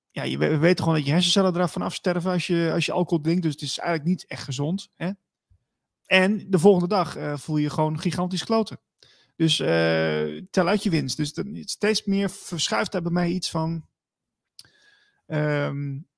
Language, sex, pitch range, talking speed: Dutch, male, 150-185 Hz, 190 wpm